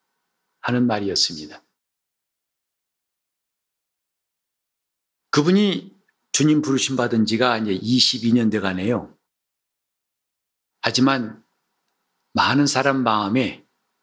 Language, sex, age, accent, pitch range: Korean, male, 50-69, native, 110-140 Hz